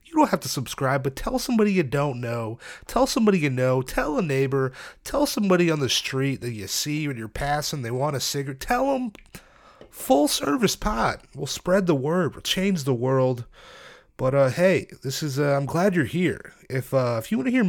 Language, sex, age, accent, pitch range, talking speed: English, male, 30-49, American, 135-185 Hz, 215 wpm